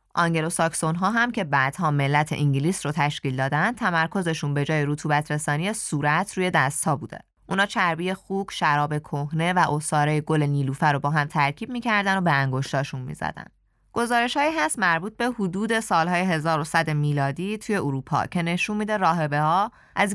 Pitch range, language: 145-195 Hz, Persian